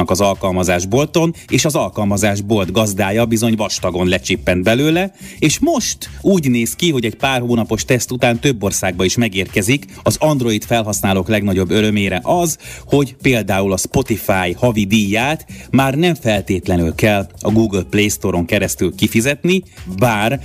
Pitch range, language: 95-120 Hz, Hungarian